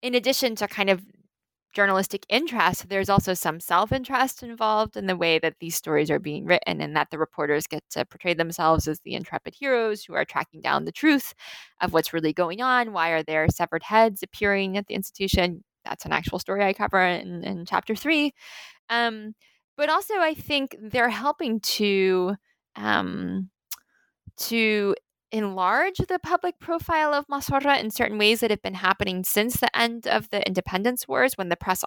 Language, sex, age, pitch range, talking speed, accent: English, female, 10-29, 180-235 Hz, 180 wpm, American